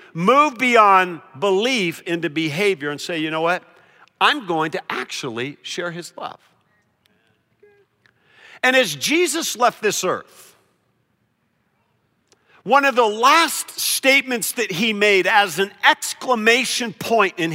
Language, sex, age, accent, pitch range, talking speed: English, male, 50-69, American, 190-260 Hz, 125 wpm